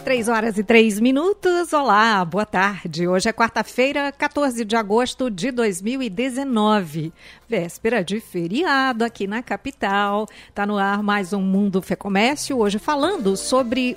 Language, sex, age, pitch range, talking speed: Portuguese, female, 50-69, 195-255 Hz, 140 wpm